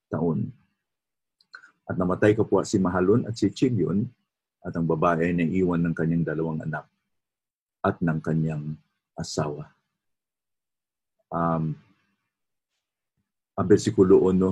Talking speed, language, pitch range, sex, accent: 110 wpm, English, 80-95 Hz, male, Filipino